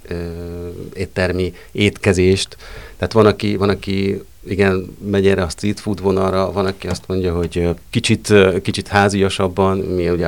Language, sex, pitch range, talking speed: Hungarian, male, 85-100 Hz, 140 wpm